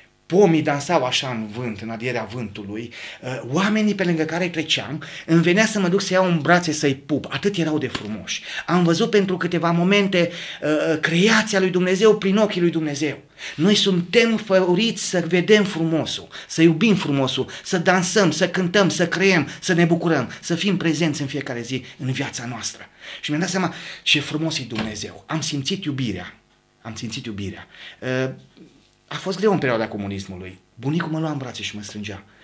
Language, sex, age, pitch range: Romanian, male, 30-49, 115-175 Hz